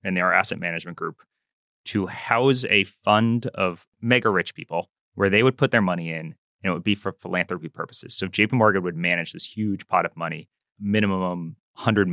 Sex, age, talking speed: male, 20-39, 195 wpm